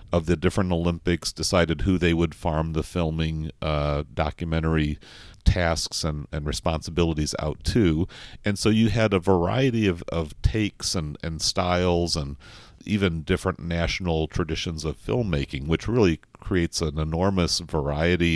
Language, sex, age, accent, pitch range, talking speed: English, male, 40-59, American, 80-95 Hz, 145 wpm